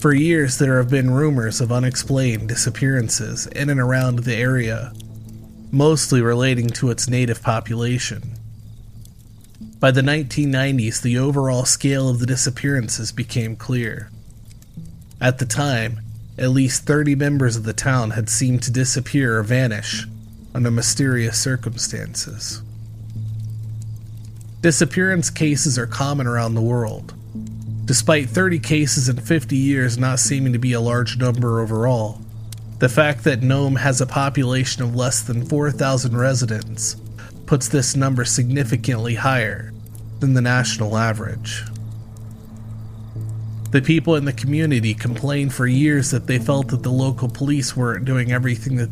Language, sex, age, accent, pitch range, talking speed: English, male, 30-49, American, 110-135 Hz, 135 wpm